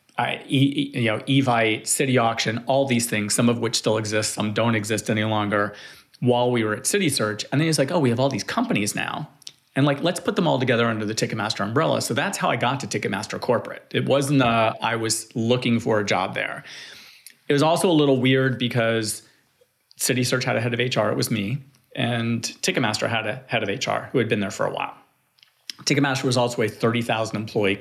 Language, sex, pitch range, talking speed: English, male, 105-130 Hz, 220 wpm